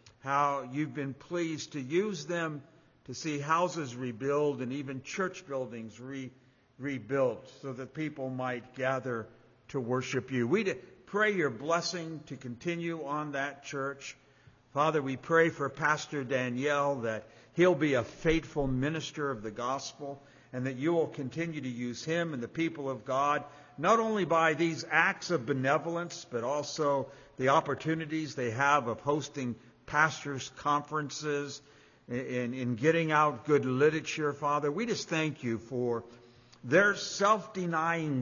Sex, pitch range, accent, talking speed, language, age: male, 125-155 Hz, American, 145 wpm, English, 50-69